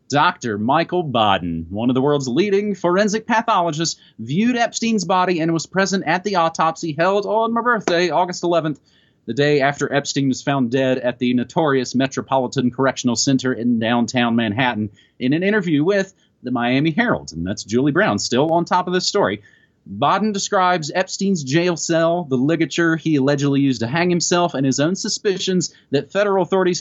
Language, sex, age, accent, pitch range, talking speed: English, male, 30-49, American, 130-175 Hz, 175 wpm